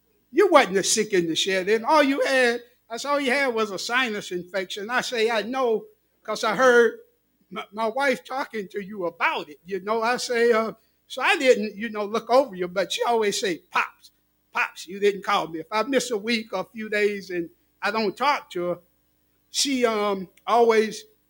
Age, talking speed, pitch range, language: 60-79, 215 wpm, 195-255 Hz, English